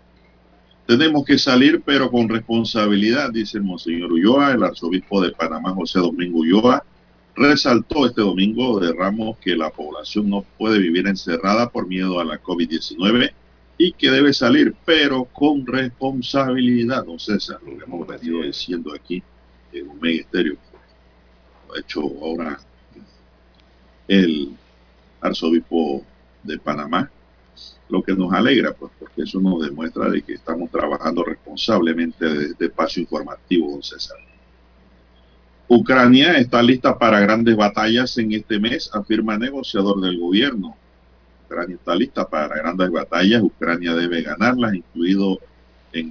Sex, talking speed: male, 140 wpm